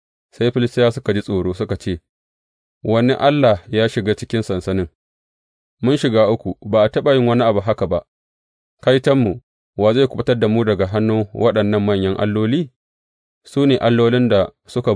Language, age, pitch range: English, 30-49, 100-125 Hz